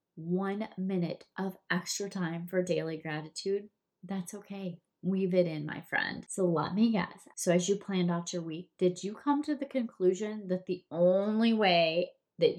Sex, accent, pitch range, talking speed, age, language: female, American, 175-225 Hz, 175 wpm, 20-39, English